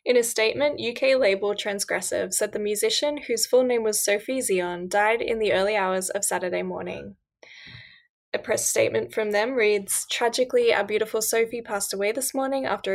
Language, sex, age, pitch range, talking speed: English, female, 10-29, 195-245 Hz, 175 wpm